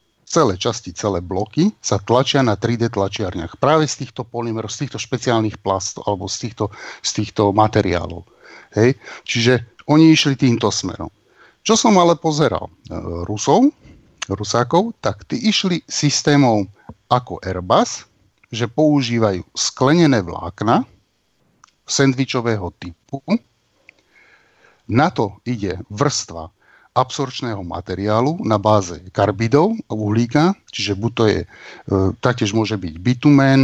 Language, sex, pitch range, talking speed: Slovak, male, 100-130 Hz, 120 wpm